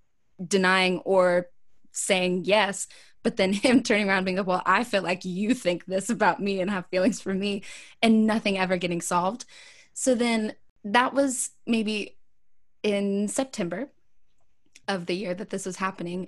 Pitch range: 180-215 Hz